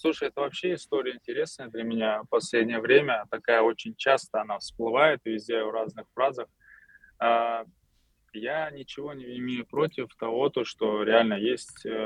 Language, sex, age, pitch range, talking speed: Russian, male, 20-39, 110-155 Hz, 135 wpm